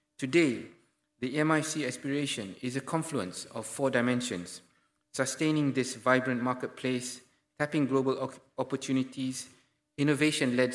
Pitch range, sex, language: 120-145 Hz, male, English